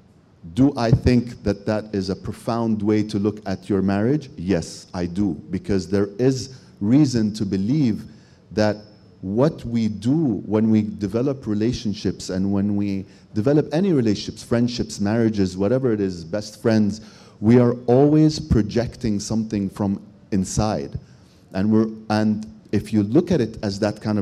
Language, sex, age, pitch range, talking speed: English, male, 40-59, 100-120 Hz, 155 wpm